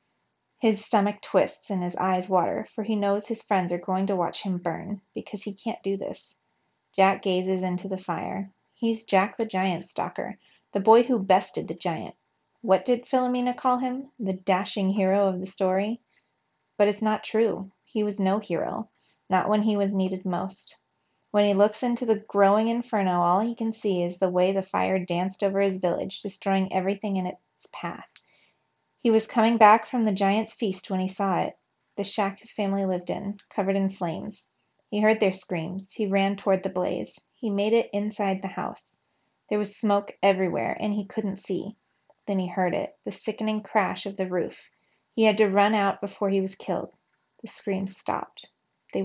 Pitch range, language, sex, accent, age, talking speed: 190-215 Hz, English, female, American, 30-49, 190 wpm